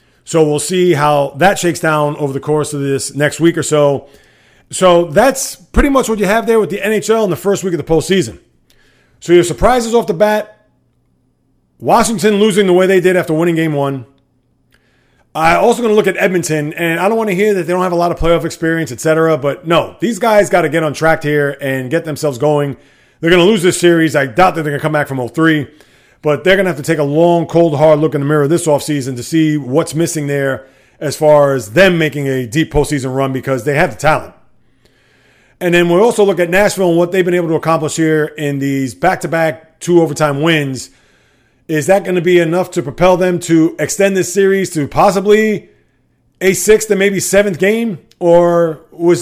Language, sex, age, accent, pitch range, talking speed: English, male, 30-49, American, 145-185 Hz, 225 wpm